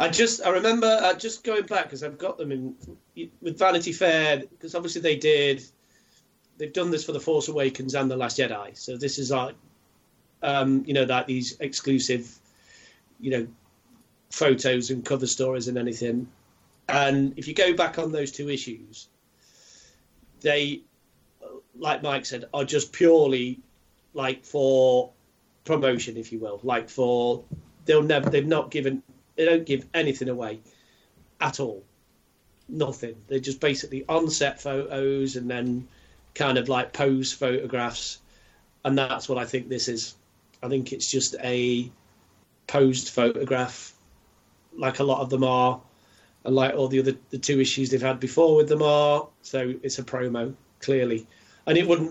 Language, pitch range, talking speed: English, 125-145 Hz, 160 wpm